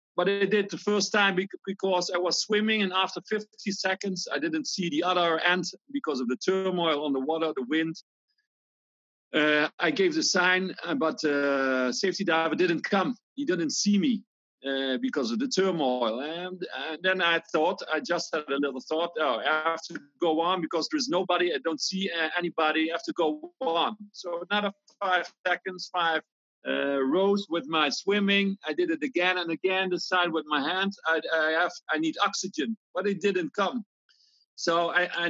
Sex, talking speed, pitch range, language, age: male, 190 wpm, 160-200 Hz, English, 50-69